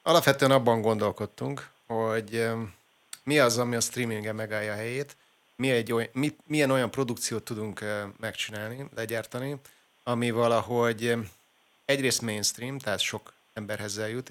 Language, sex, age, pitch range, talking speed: Hungarian, male, 30-49, 110-125 Hz, 125 wpm